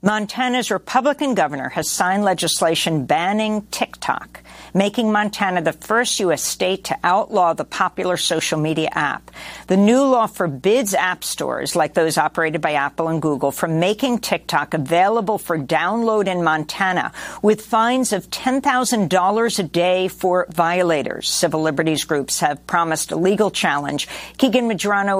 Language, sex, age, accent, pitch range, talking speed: English, female, 50-69, American, 160-210 Hz, 145 wpm